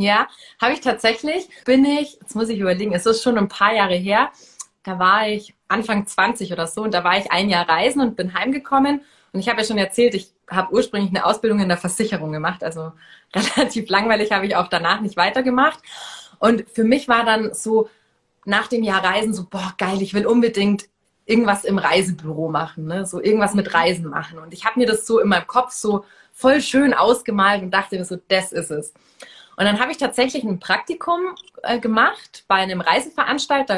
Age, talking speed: 20-39, 205 wpm